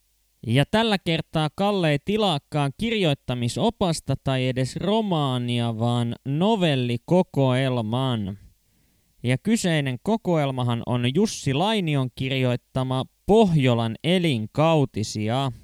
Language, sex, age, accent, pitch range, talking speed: Finnish, male, 20-39, native, 120-170 Hz, 80 wpm